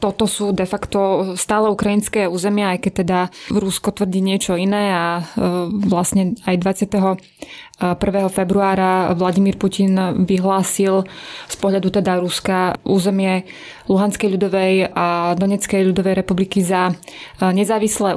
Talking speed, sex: 115 wpm, female